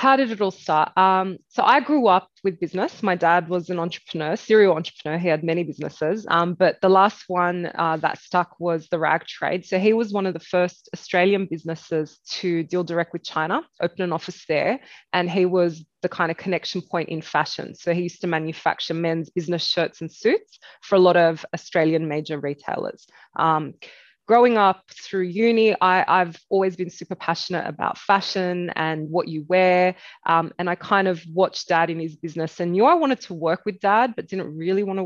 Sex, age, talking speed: female, 20-39, 205 wpm